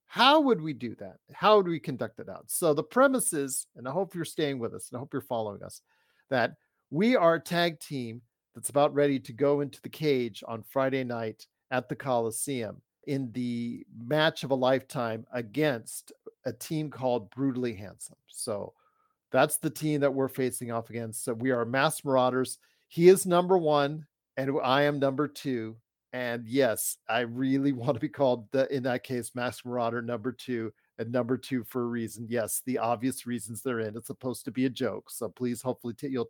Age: 50-69